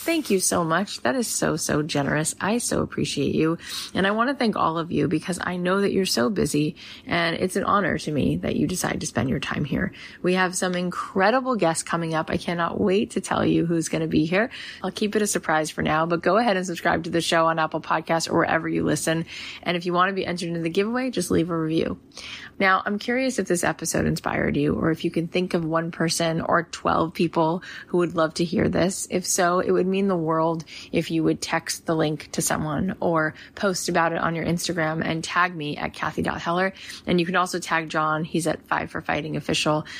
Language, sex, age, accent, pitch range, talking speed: English, female, 20-39, American, 160-185 Hz, 240 wpm